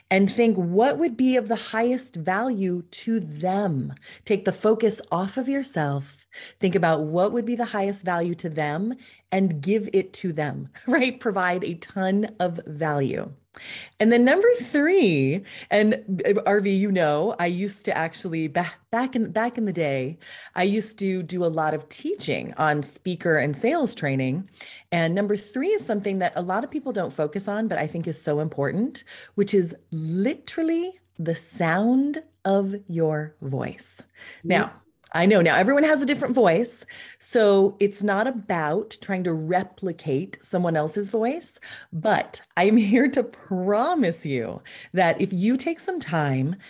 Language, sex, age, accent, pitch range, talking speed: English, female, 30-49, American, 165-230 Hz, 160 wpm